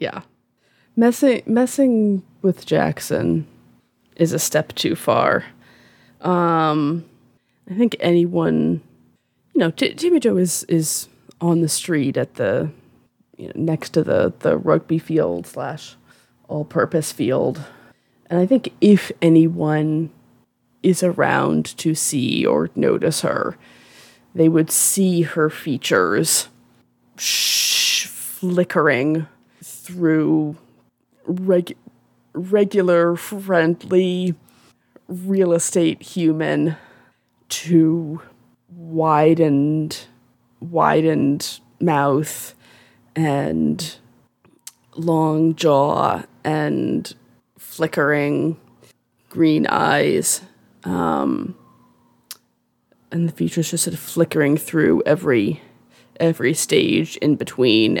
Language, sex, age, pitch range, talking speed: English, female, 20-39, 150-175 Hz, 95 wpm